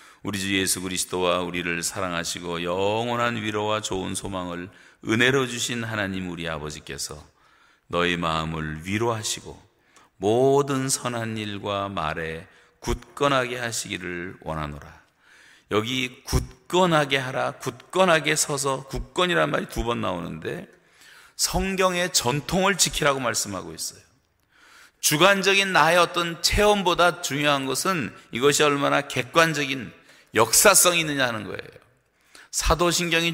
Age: 40-59